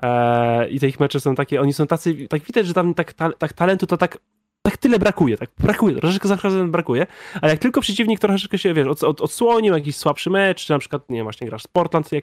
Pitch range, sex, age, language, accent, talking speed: 125-165 Hz, male, 20-39, Polish, native, 250 wpm